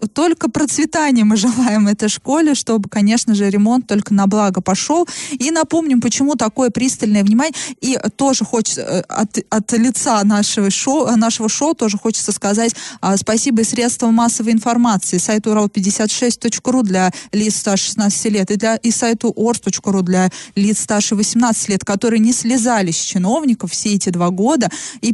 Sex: female